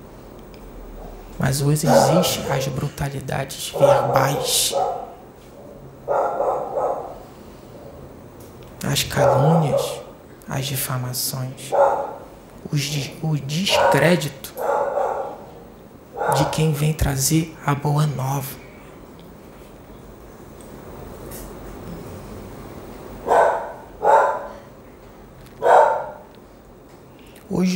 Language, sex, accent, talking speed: Portuguese, male, Brazilian, 50 wpm